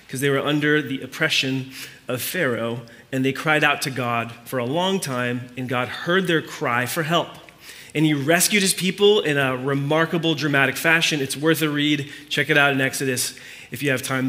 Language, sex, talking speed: English, male, 200 wpm